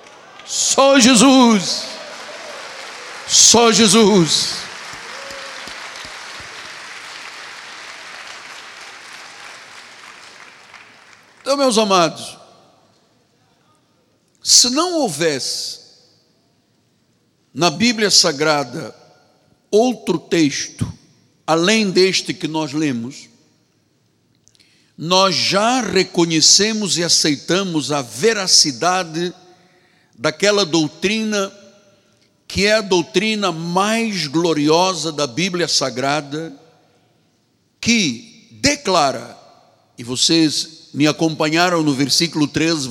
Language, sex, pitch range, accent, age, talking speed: Portuguese, male, 150-205 Hz, Brazilian, 60-79, 65 wpm